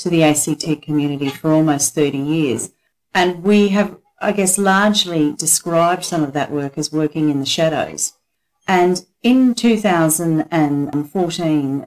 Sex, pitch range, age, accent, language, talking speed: female, 145-170 Hz, 40-59, Australian, English, 135 wpm